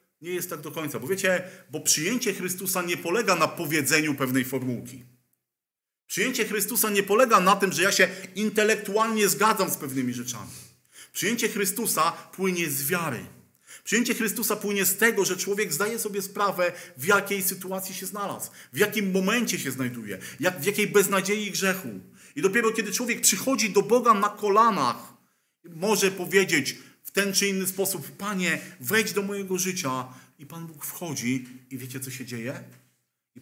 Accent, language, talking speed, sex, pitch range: native, Polish, 160 wpm, male, 130-200 Hz